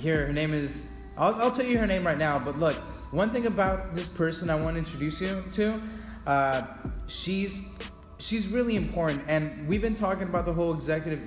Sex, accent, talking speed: male, American, 200 wpm